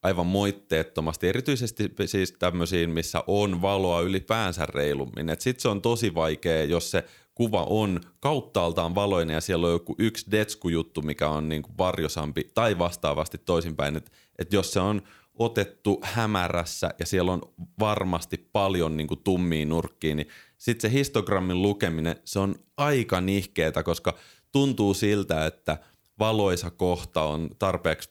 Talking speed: 145 wpm